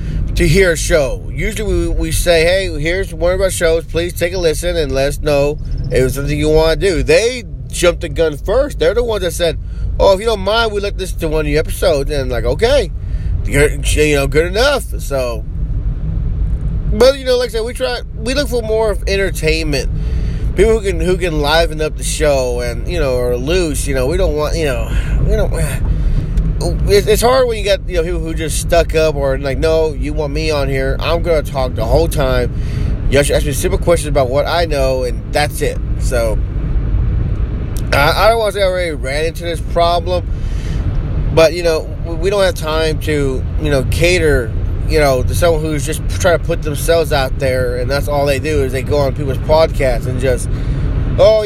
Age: 30-49